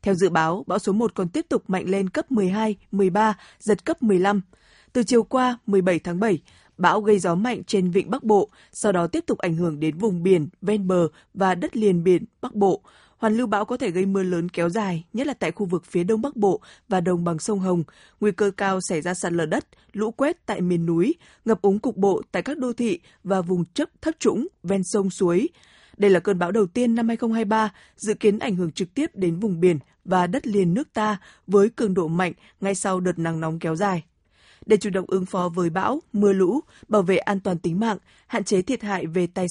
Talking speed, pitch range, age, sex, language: 235 wpm, 180-220 Hz, 20-39, female, Vietnamese